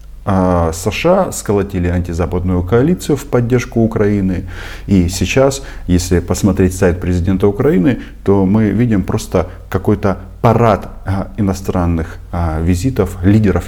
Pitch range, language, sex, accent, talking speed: 85-110 Hz, Russian, male, native, 100 wpm